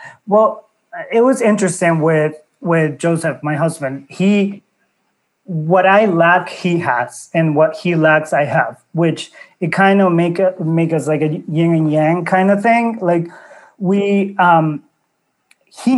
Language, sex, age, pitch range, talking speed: English, male, 30-49, 155-185 Hz, 150 wpm